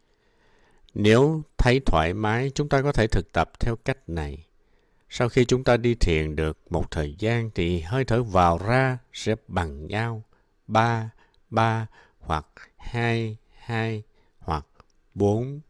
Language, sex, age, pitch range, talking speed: Vietnamese, male, 60-79, 90-125 Hz, 145 wpm